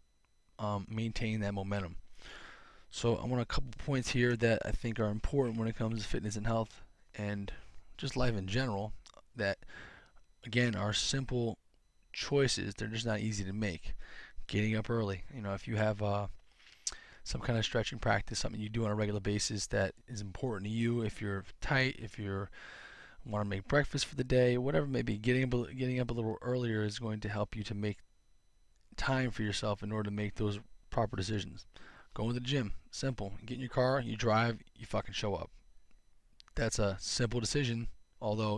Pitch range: 100-120 Hz